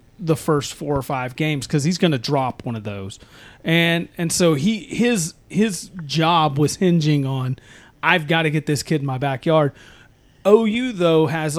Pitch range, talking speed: 140-175 Hz, 185 wpm